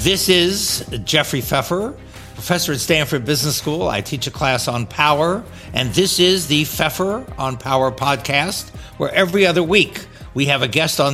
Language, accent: English, American